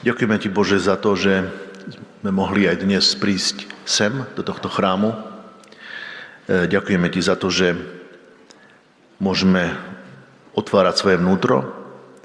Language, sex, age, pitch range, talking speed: Slovak, male, 50-69, 90-95 Hz, 120 wpm